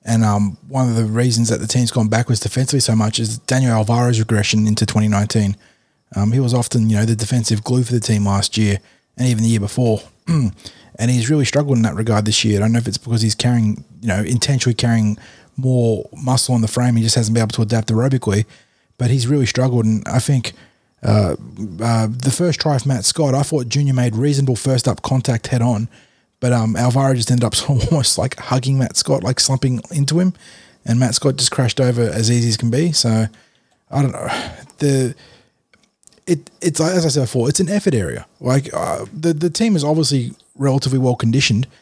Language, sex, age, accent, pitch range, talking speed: English, male, 20-39, Australian, 115-135 Hz, 210 wpm